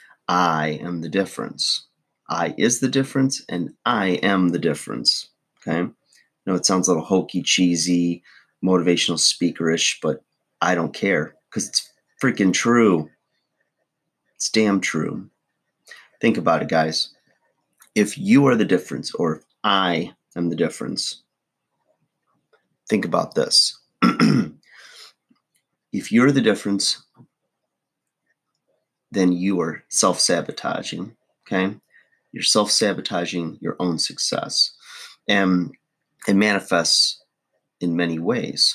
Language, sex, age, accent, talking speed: English, male, 30-49, American, 110 wpm